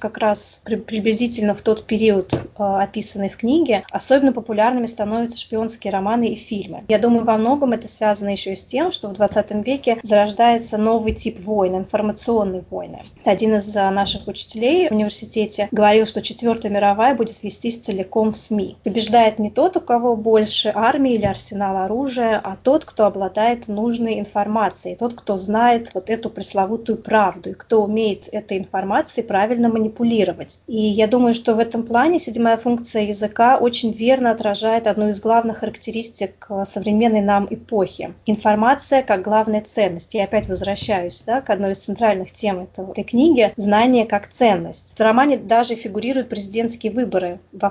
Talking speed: 155 wpm